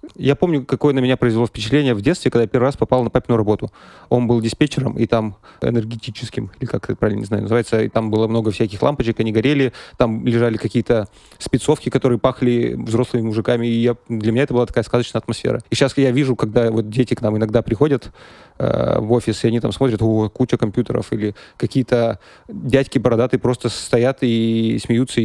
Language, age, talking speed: Russian, 20-39, 195 wpm